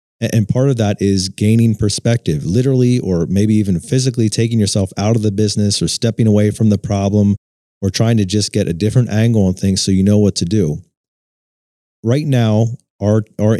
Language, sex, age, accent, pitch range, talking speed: English, male, 30-49, American, 95-110 Hz, 195 wpm